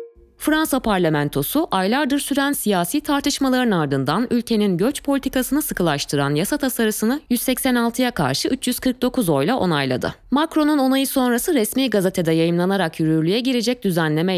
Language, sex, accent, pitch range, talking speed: Turkish, female, native, 170-260 Hz, 115 wpm